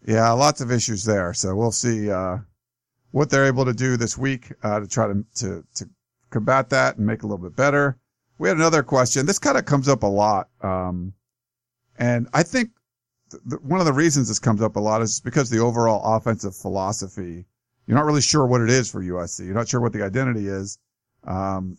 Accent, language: American, English